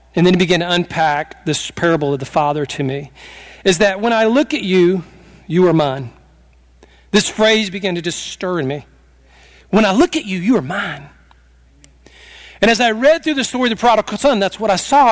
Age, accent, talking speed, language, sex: 40-59, American, 215 wpm, English, male